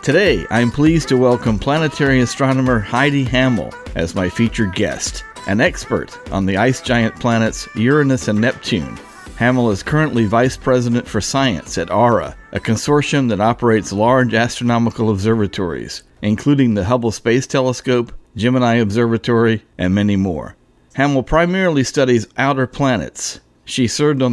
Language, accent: English, American